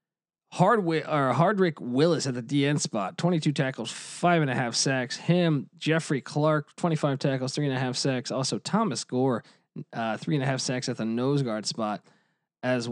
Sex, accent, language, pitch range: male, American, English, 125-165 Hz